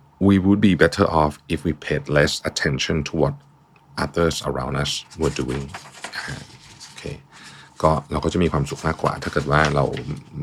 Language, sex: Thai, male